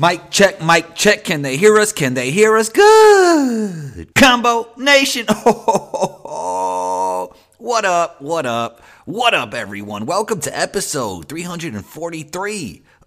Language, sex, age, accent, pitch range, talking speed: English, male, 30-49, American, 115-180 Hz, 125 wpm